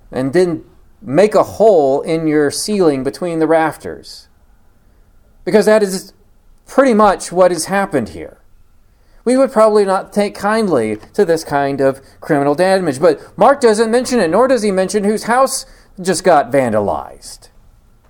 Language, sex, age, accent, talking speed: English, male, 40-59, American, 155 wpm